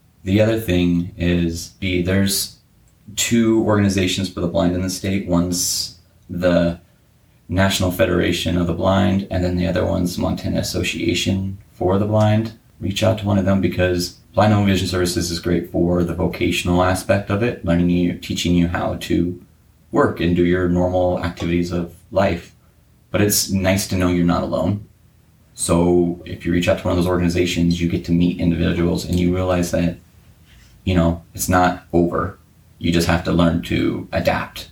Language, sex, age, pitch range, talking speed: English, male, 30-49, 85-95 Hz, 180 wpm